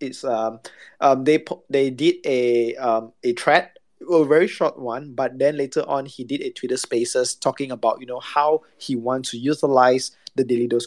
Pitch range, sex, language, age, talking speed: 130-170 Hz, male, English, 20-39, 190 wpm